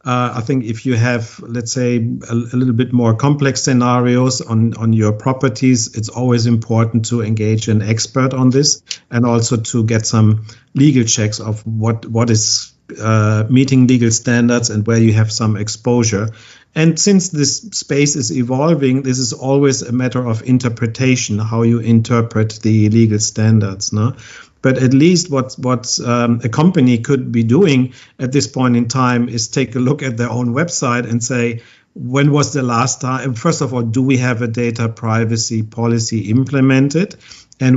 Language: English